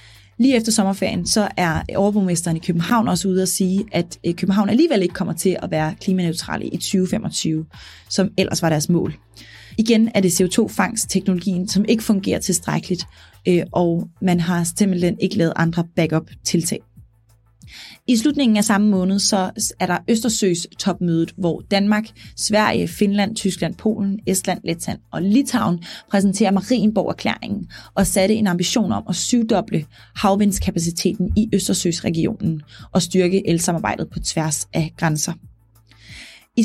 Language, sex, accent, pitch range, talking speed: Danish, female, native, 170-205 Hz, 140 wpm